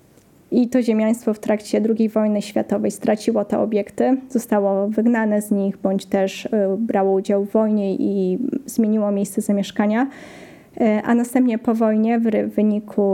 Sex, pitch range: female, 205-225 Hz